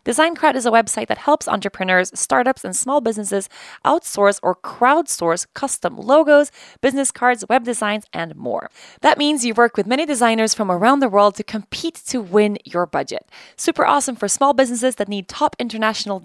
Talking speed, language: 175 wpm, English